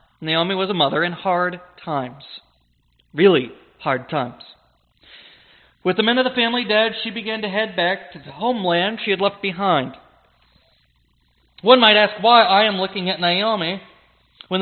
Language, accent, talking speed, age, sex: English, American, 160 wpm, 40-59, male